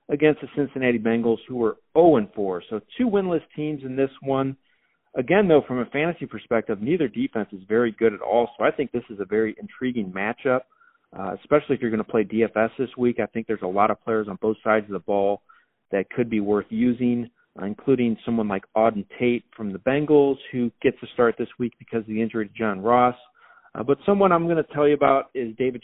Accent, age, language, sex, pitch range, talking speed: American, 40-59, English, male, 115-140 Hz, 225 wpm